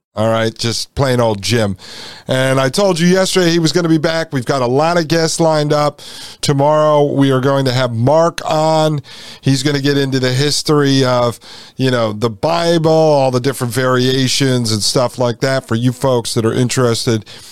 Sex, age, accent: male, 40-59, American